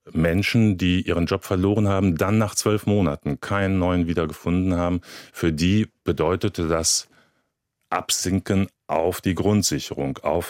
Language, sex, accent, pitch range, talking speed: German, male, German, 80-100 Hz, 130 wpm